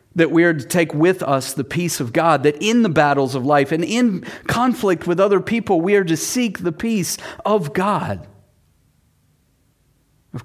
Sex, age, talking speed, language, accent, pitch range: male, 40-59, 185 wpm, English, American, 110-180 Hz